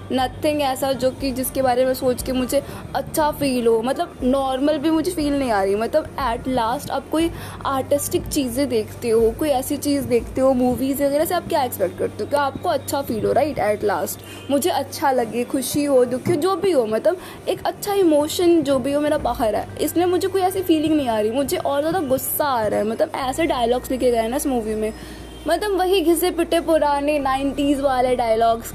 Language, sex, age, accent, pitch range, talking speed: Hindi, female, 20-39, native, 235-300 Hz, 215 wpm